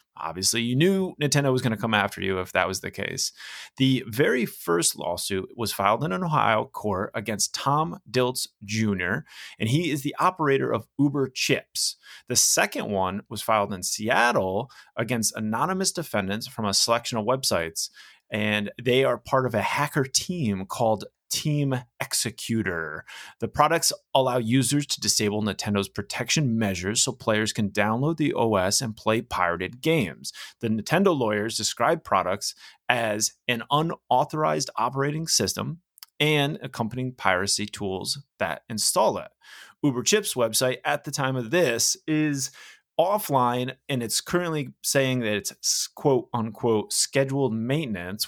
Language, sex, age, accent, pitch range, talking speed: English, male, 30-49, American, 105-140 Hz, 150 wpm